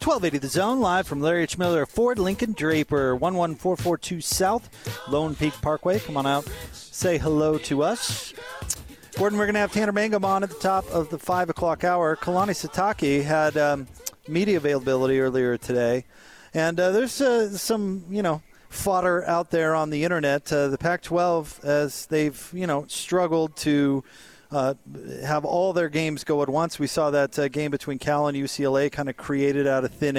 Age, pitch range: 30-49, 140-175 Hz